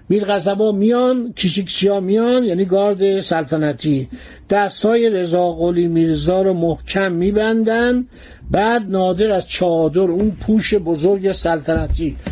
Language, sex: Persian, male